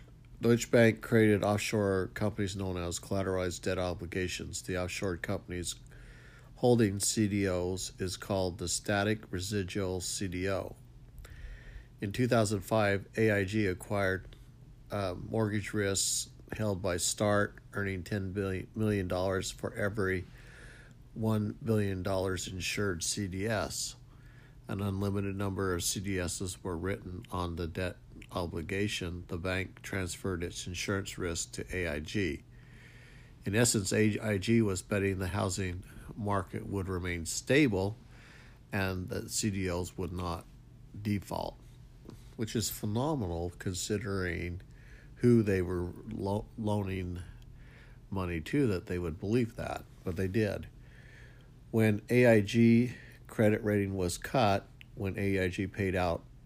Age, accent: 50-69, American